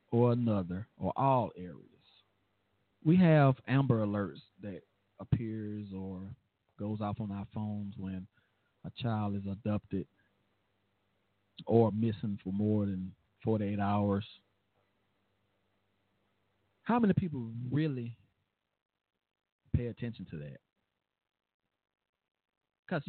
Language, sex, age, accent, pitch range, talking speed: English, male, 40-59, American, 100-125 Hz, 100 wpm